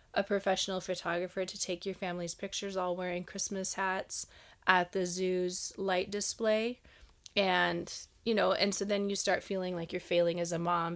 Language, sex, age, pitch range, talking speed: English, female, 20-39, 175-200 Hz, 175 wpm